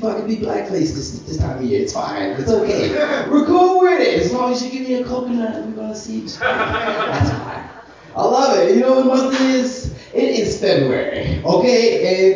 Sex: male